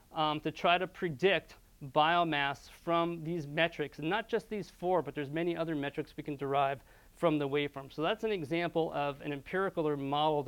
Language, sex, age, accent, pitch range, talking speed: English, male, 40-59, American, 145-175 Hz, 195 wpm